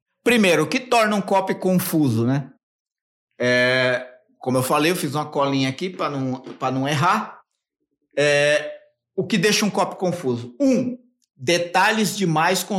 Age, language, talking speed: 50-69, Portuguese, 140 wpm